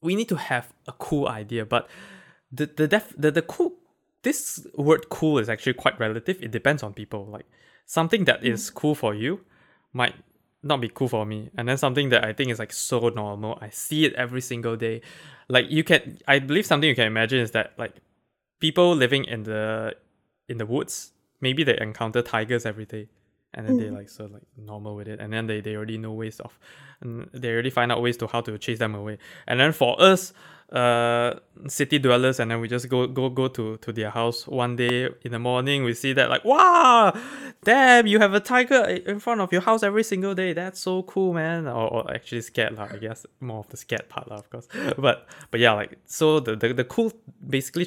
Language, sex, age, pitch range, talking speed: English, male, 20-39, 115-160 Hz, 225 wpm